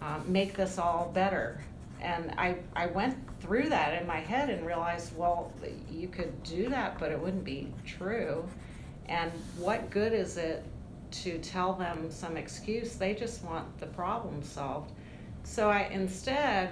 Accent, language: American, English